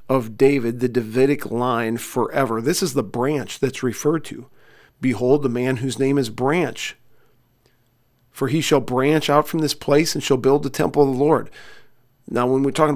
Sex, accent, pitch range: male, American, 120-145 Hz